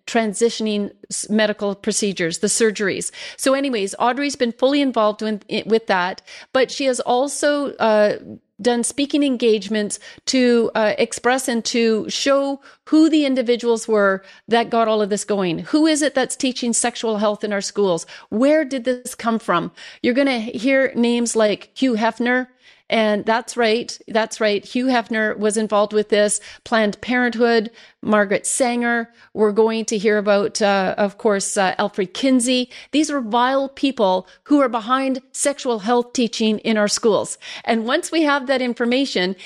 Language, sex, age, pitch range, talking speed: English, female, 40-59, 215-260 Hz, 160 wpm